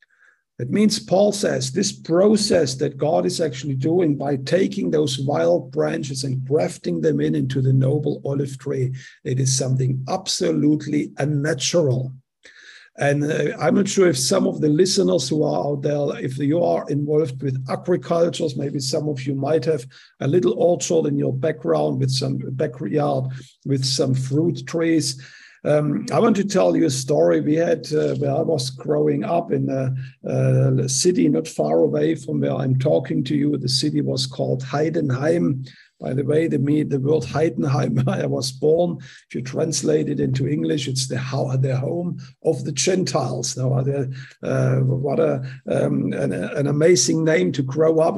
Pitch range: 135-160 Hz